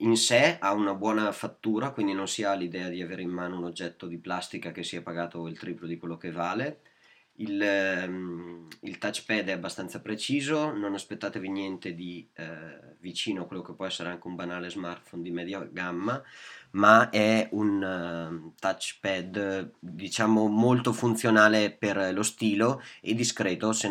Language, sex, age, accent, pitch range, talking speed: Italian, male, 20-39, native, 85-110 Hz, 170 wpm